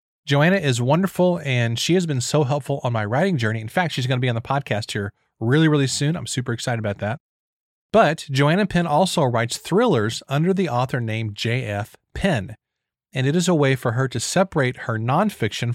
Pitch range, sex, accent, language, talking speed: 115-160 Hz, male, American, English, 205 wpm